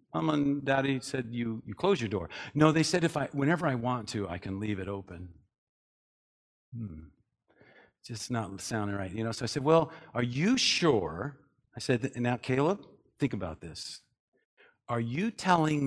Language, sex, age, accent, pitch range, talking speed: English, male, 50-69, American, 105-160 Hz, 180 wpm